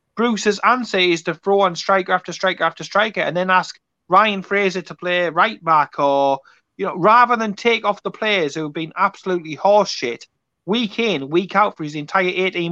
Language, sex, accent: English, male, British